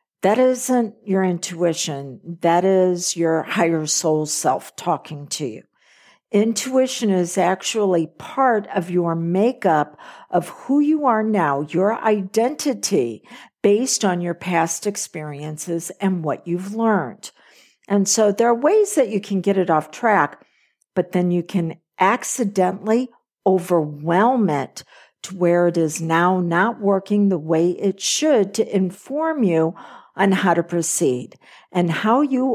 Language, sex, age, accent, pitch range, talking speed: English, female, 50-69, American, 165-220 Hz, 140 wpm